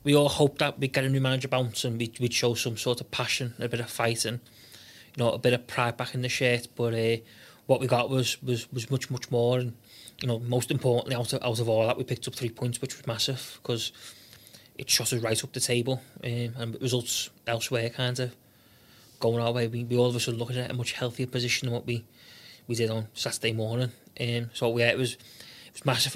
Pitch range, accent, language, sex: 120-130 Hz, British, English, male